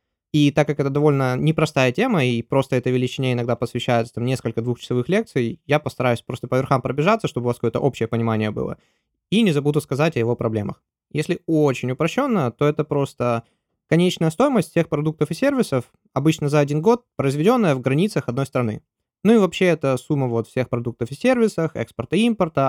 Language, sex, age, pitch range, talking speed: Russian, male, 20-39, 120-160 Hz, 190 wpm